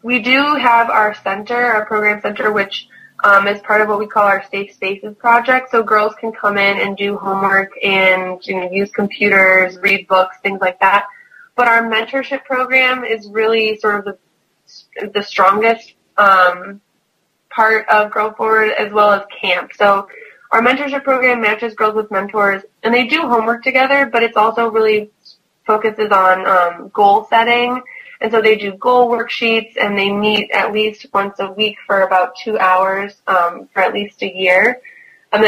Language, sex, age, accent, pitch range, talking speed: English, female, 20-39, American, 195-230 Hz, 180 wpm